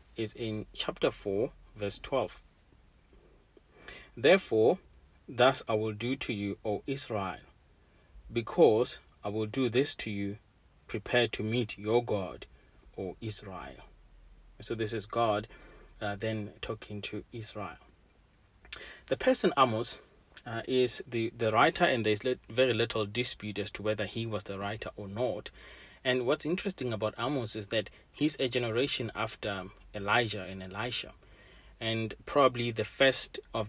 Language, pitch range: English, 105-125 Hz